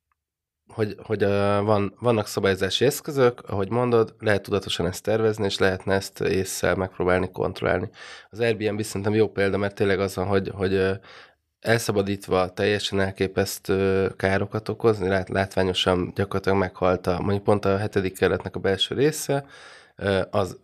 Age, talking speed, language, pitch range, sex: 20-39, 135 wpm, Hungarian, 95-100 Hz, male